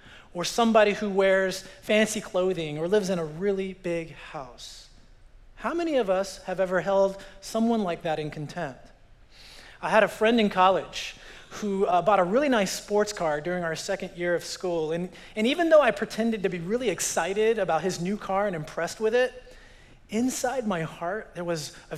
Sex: male